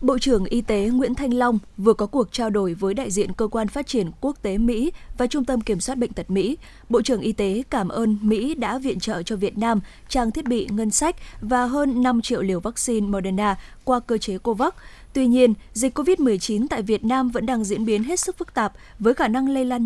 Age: 20-39